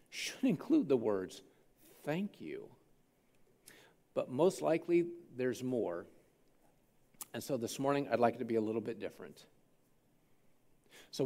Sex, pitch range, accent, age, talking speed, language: male, 120-155 Hz, American, 50-69, 135 wpm, English